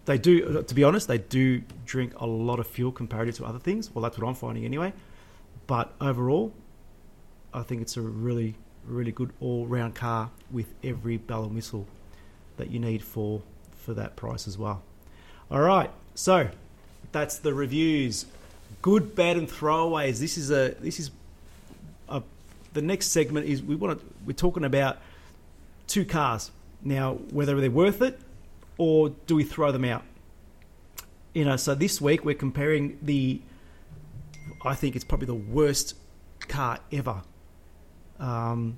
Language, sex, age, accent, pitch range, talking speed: English, male, 30-49, Australian, 110-145 Hz, 160 wpm